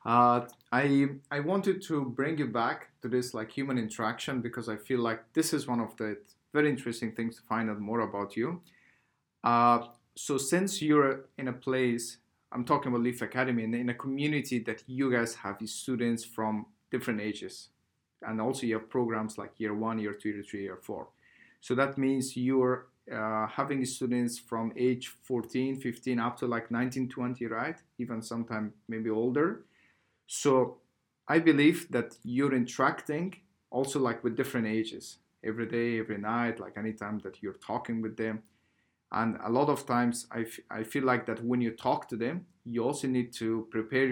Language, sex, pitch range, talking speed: English, male, 110-130 Hz, 180 wpm